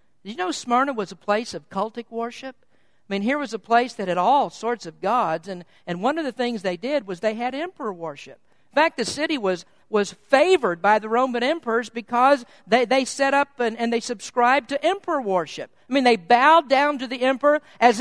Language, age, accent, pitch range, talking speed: English, 50-69, American, 210-290 Hz, 225 wpm